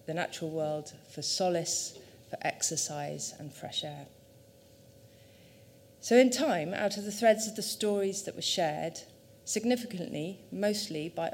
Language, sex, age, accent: English, female, 40-59, British